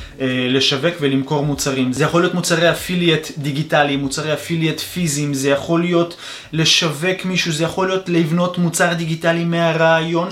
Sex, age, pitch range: male, 20-39, 155-195 Hz